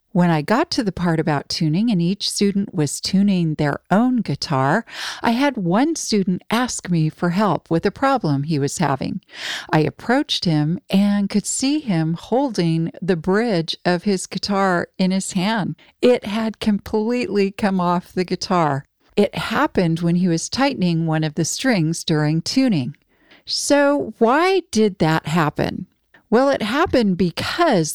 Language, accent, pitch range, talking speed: English, American, 170-235 Hz, 160 wpm